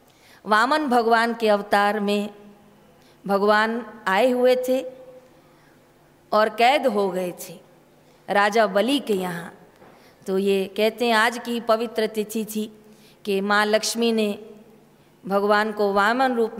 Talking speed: 130 wpm